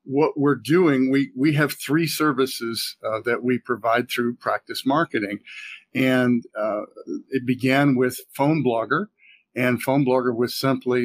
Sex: male